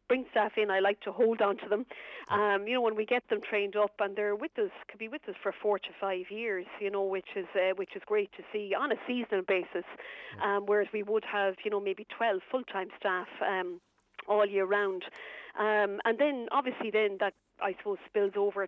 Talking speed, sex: 230 wpm, female